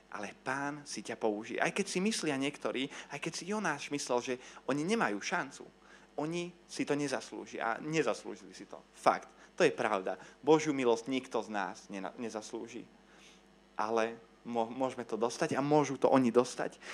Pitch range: 115-160 Hz